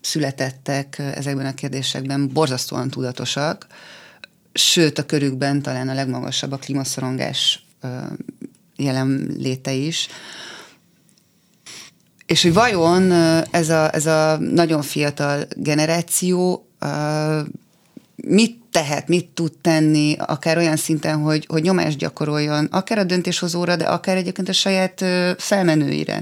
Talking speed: 105 wpm